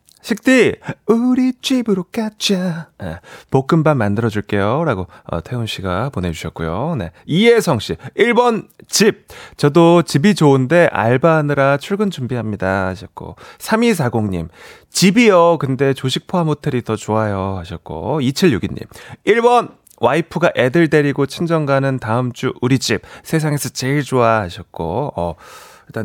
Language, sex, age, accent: Korean, male, 30-49, native